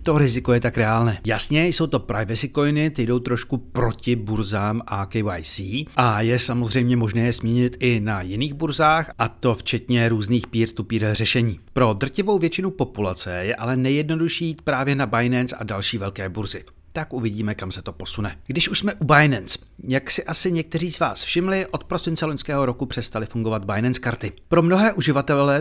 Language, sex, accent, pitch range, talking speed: Czech, male, native, 110-155 Hz, 180 wpm